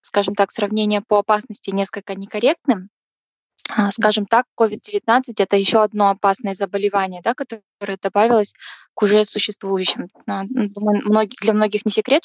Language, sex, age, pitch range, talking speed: Russian, female, 10-29, 200-230 Hz, 125 wpm